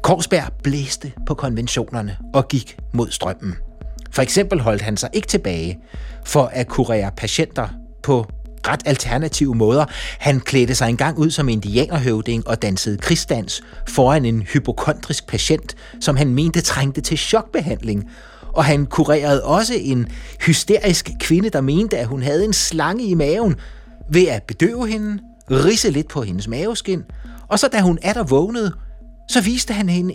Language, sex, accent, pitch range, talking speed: Danish, male, native, 120-185 Hz, 160 wpm